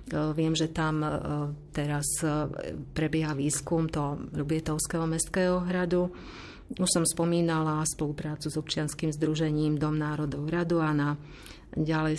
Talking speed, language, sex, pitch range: 115 wpm, Slovak, female, 155-165 Hz